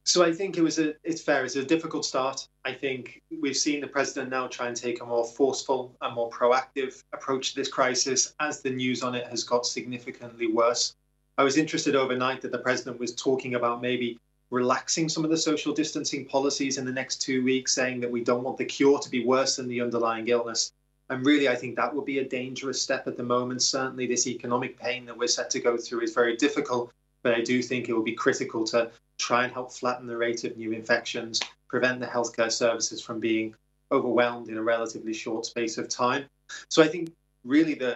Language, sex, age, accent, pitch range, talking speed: English, male, 20-39, British, 120-135 Hz, 225 wpm